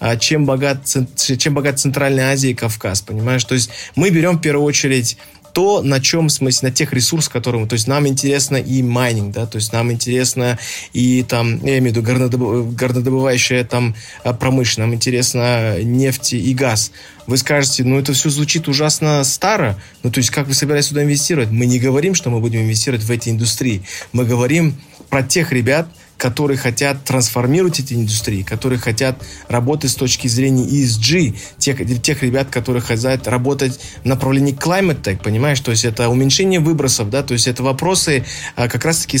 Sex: male